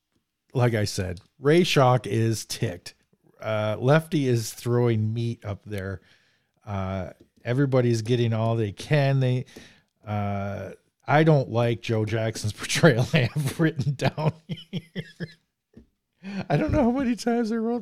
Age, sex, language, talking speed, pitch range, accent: 40-59, male, English, 135 wpm, 110-150 Hz, American